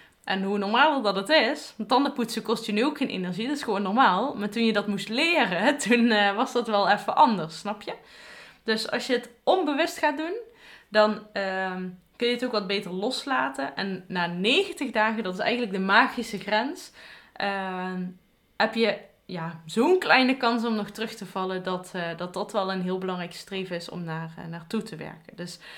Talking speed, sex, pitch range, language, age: 195 wpm, female, 190-235 Hz, Dutch, 20-39